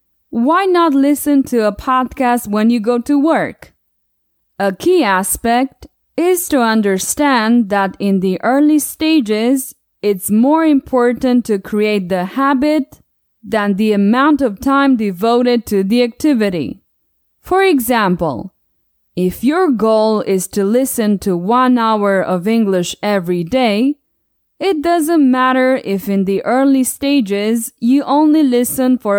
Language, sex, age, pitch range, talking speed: English, female, 20-39, 210-280 Hz, 135 wpm